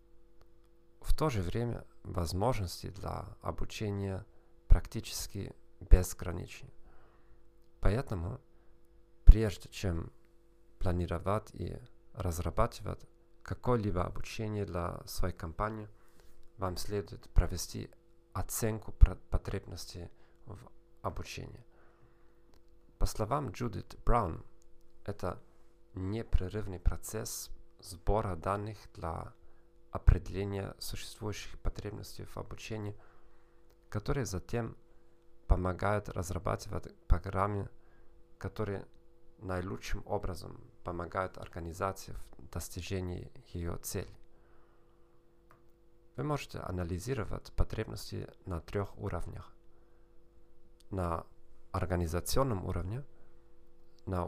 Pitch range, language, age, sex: 90-115 Hz, Russian, 40-59, male